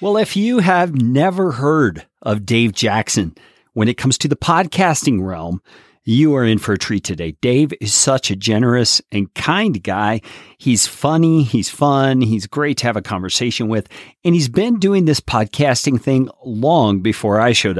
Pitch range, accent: 110-155 Hz, American